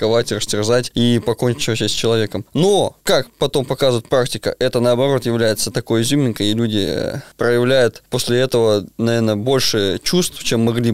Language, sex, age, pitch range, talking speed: Russian, male, 20-39, 110-140 Hz, 145 wpm